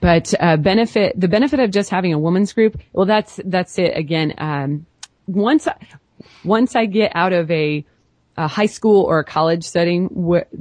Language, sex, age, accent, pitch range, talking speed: English, female, 20-39, American, 150-195 Hz, 185 wpm